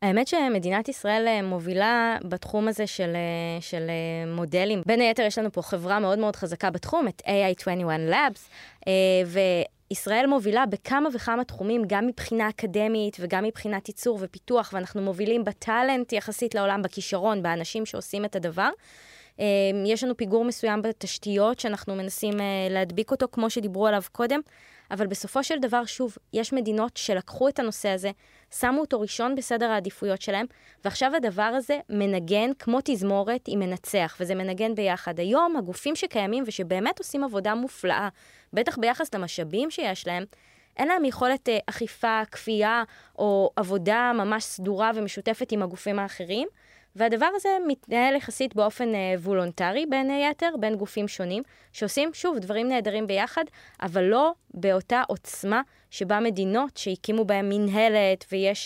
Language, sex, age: Hebrew, female, 20-39